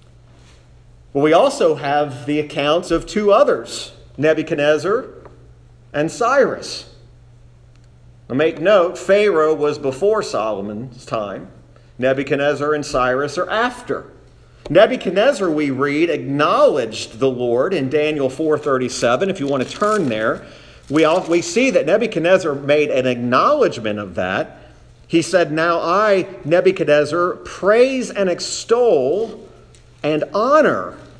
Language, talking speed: English, 110 wpm